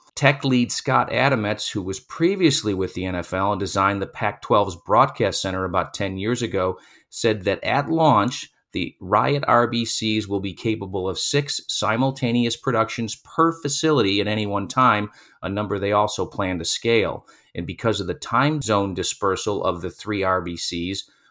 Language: English